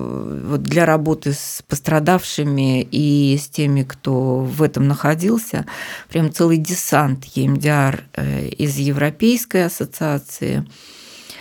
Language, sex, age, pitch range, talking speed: Russian, female, 20-39, 140-175 Hz, 95 wpm